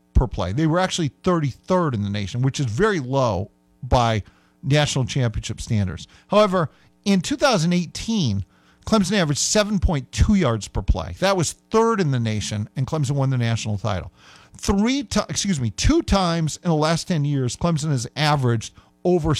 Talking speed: 160 wpm